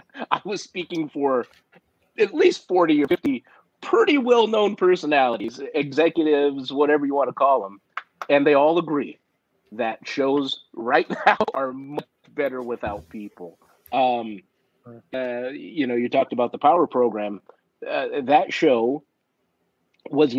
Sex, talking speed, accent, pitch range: male, 130 wpm, American, 120-155 Hz